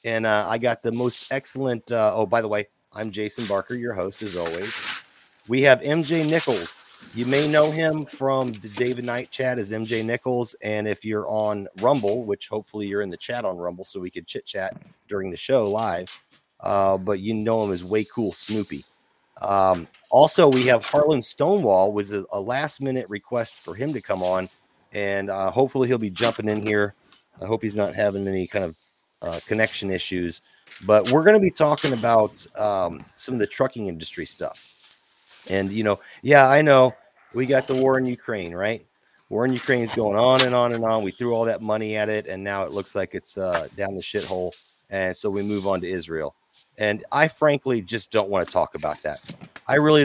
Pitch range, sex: 95-125 Hz, male